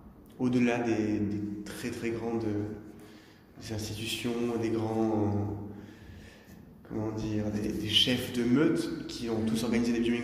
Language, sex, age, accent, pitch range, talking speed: French, male, 20-39, French, 110-135 Hz, 135 wpm